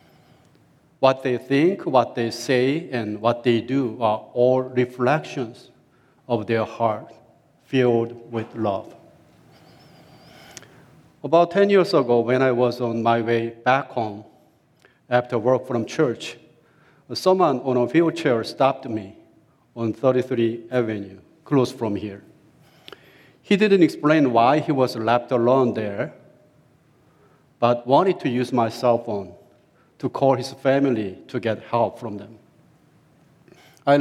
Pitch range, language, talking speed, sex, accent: 115-150 Hz, English, 130 wpm, male, Japanese